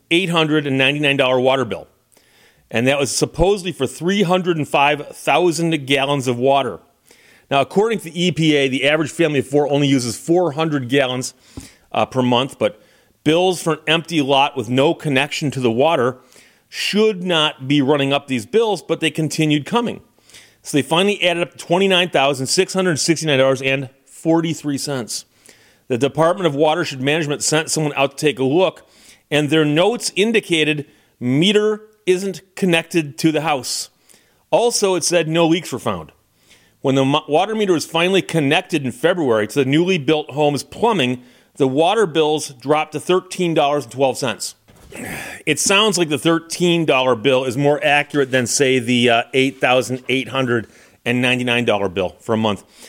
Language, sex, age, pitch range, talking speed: English, male, 30-49, 130-165 Hz, 140 wpm